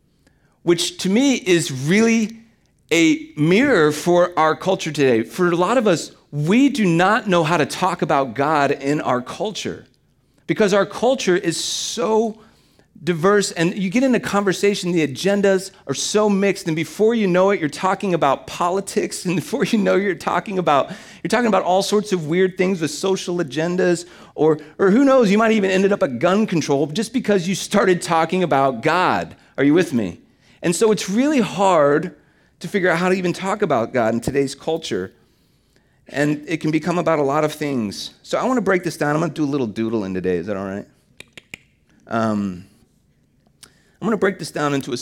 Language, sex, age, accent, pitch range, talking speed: English, male, 40-59, American, 140-195 Hz, 200 wpm